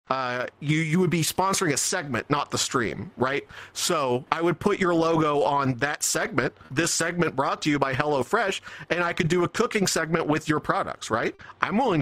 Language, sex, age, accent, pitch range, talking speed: English, male, 40-59, American, 145-185 Hz, 210 wpm